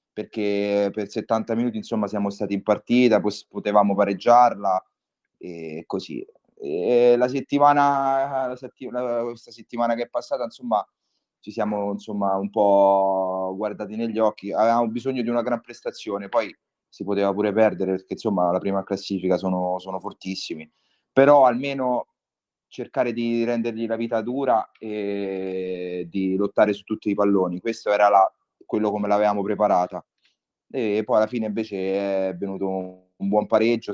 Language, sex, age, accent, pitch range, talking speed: Italian, male, 30-49, native, 95-115 Hz, 150 wpm